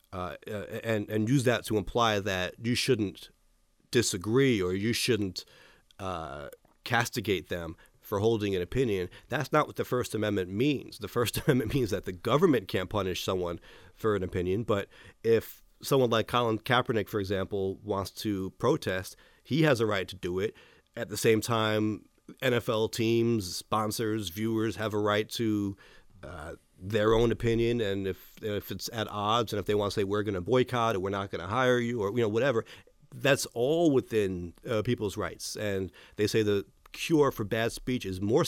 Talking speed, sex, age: 185 wpm, male, 40-59